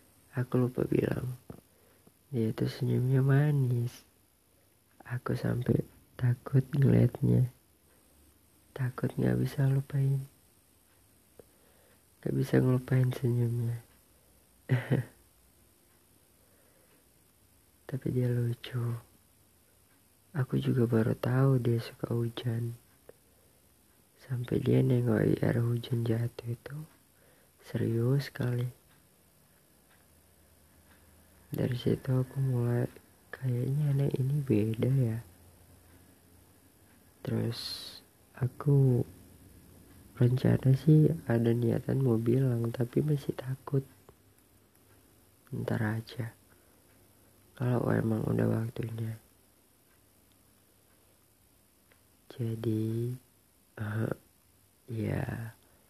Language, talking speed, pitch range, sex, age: Indonesian, 75 wpm, 95-125 Hz, female, 30-49